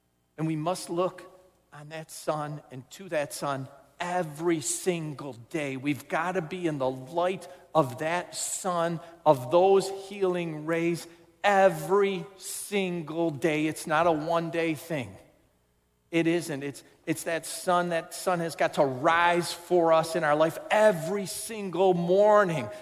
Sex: male